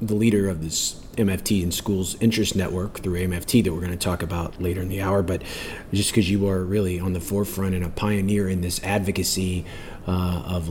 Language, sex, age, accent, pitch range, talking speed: English, male, 40-59, American, 85-100 Hz, 215 wpm